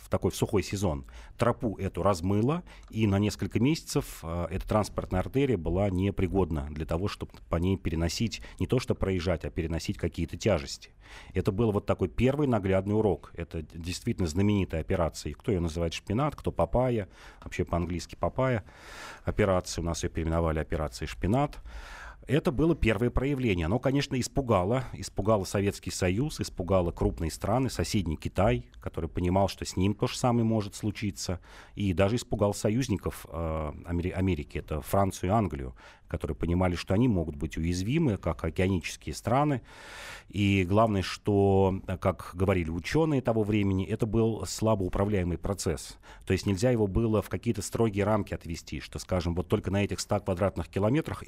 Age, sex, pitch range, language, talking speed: 40-59, male, 85-110 Hz, Russian, 155 wpm